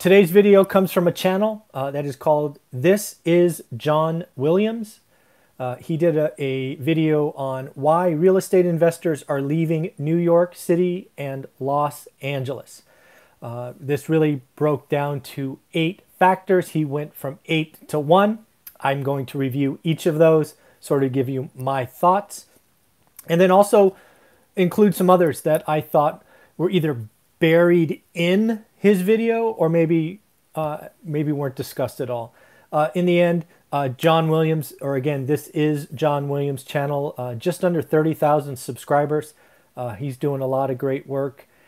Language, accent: English, American